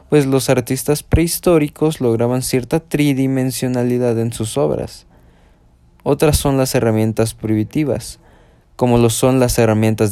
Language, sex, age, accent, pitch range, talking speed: Spanish, male, 20-39, Mexican, 110-140 Hz, 120 wpm